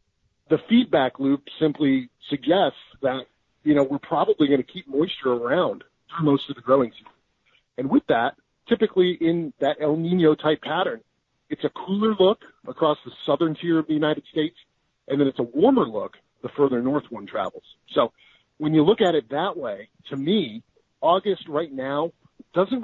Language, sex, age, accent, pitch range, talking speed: English, male, 40-59, American, 135-175 Hz, 175 wpm